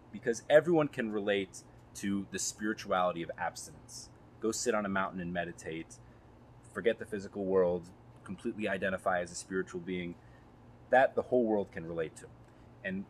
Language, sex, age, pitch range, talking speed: English, male, 30-49, 90-125 Hz, 155 wpm